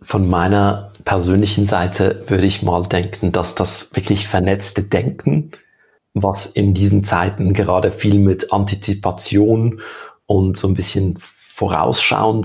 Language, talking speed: German, 125 wpm